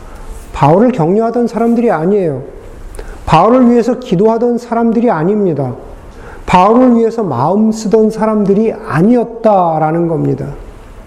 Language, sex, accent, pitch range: Korean, male, native, 160-230 Hz